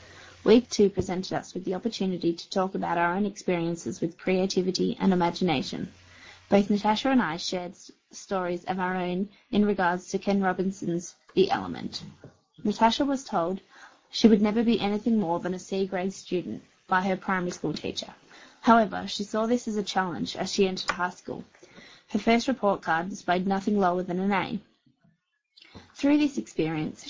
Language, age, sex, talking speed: English, 20-39, female, 170 wpm